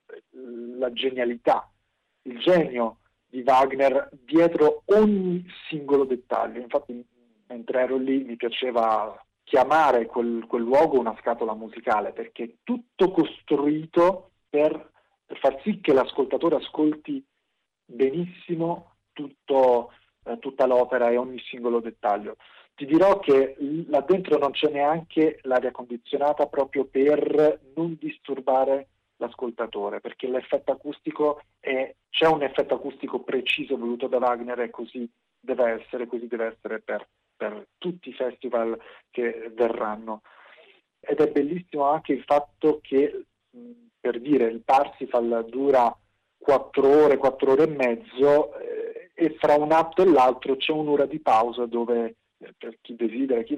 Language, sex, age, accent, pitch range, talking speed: Italian, male, 40-59, native, 120-150 Hz, 130 wpm